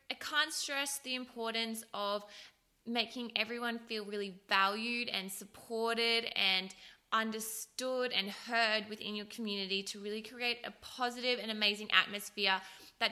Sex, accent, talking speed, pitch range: female, Australian, 135 wpm, 200-235 Hz